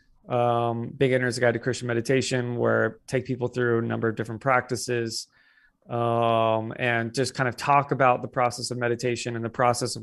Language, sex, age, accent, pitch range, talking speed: English, male, 20-39, American, 115-135 Hz, 180 wpm